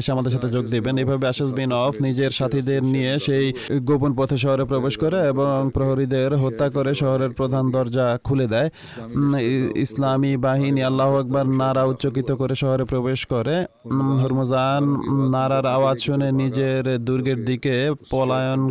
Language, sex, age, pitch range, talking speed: Bengali, male, 30-49, 130-140 Hz, 60 wpm